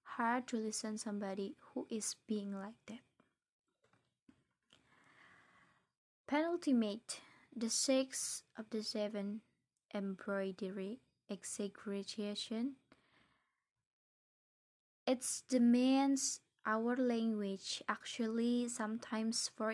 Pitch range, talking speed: 210-255 Hz, 75 wpm